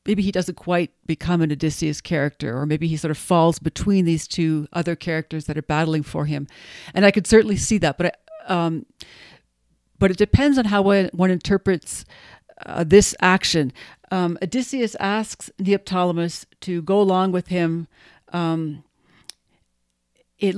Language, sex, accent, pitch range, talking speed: English, female, American, 165-200 Hz, 160 wpm